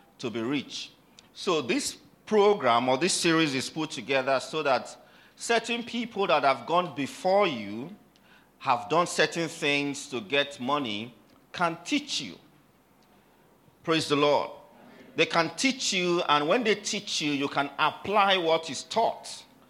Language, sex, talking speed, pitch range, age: English, male, 150 wpm, 120-165 Hz, 50-69